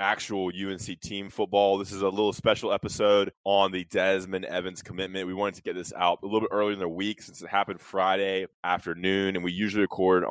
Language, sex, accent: English, male, American